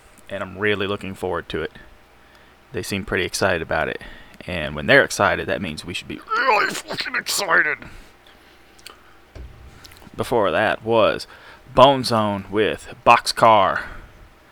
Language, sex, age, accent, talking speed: English, male, 20-39, American, 130 wpm